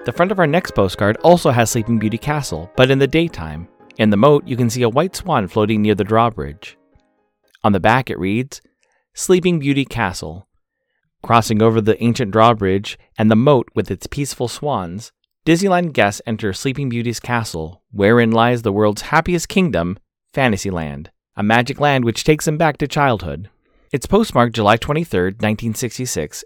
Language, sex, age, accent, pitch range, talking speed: English, male, 30-49, American, 105-140 Hz, 170 wpm